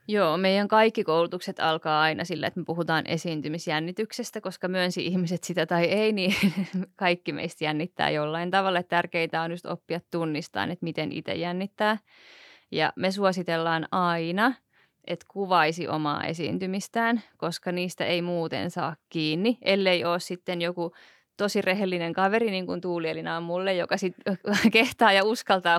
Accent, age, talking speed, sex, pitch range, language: native, 20-39, 145 wpm, female, 165-195 Hz, Finnish